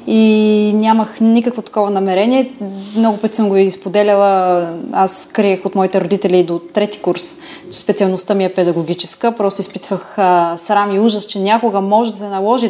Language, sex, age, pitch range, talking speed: Bulgarian, female, 20-39, 190-235 Hz, 170 wpm